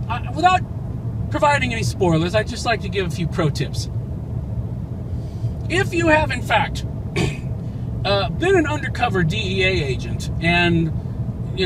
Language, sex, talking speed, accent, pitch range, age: English, male, 140 wpm, American, 115-155 Hz, 40-59